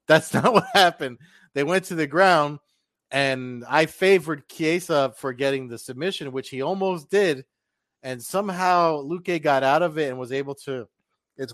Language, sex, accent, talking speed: English, male, American, 170 wpm